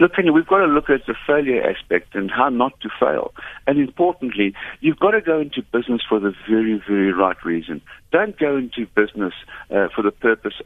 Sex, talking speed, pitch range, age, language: male, 205 wpm, 110-145 Hz, 60-79, English